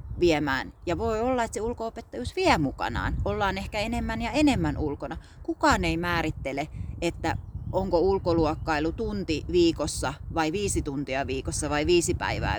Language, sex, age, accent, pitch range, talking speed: Finnish, female, 30-49, native, 150-205 Hz, 145 wpm